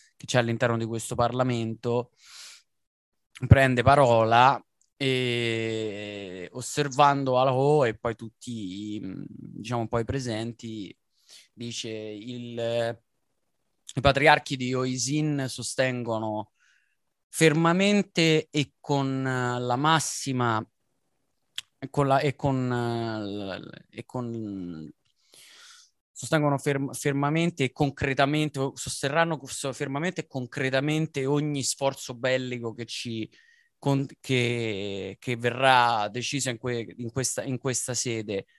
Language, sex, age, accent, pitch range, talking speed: Italian, male, 20-39, native, 115-145 Hz, 100 wpm